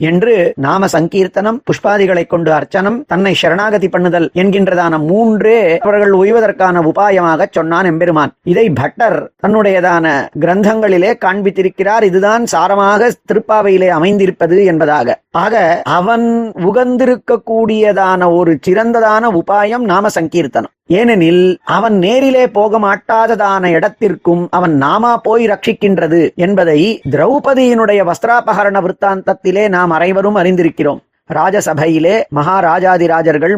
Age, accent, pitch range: 30-49, native, 175-215 Hz